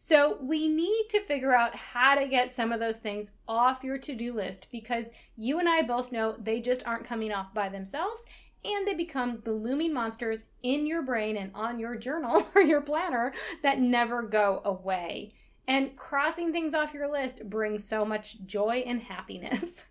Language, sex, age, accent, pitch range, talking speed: English, female, 20-39, American, 220-295 Hz, 185 wpm